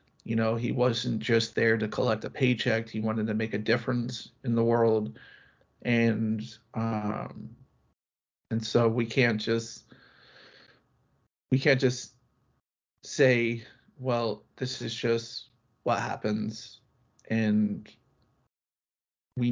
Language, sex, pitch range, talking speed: English, male, 115-125 Hz, 115 wpm